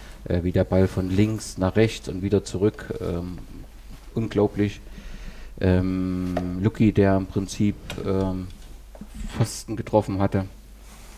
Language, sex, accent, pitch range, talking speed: German, male, German, 95-110 Hz, 115 wpm